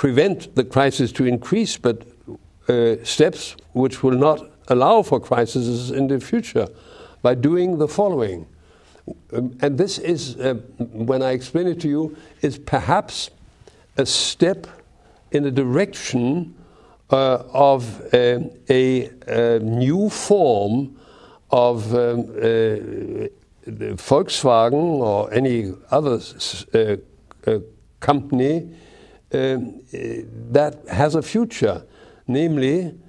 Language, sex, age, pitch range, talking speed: English, male, 60-79, 120-160 Hz, 110 wpm